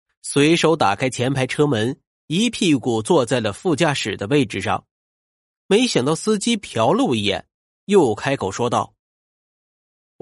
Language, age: Chinese, 30-49